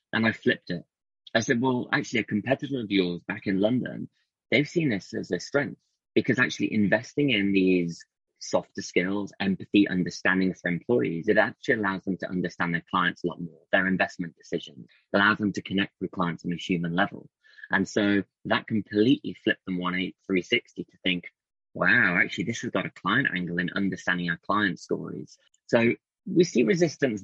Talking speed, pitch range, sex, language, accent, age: 185 wpm, 90-115 Hz, male, English, British, 20-39